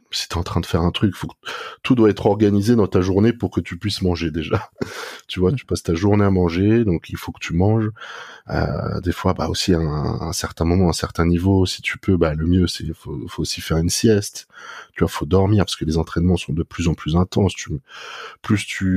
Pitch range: 85-100 Hz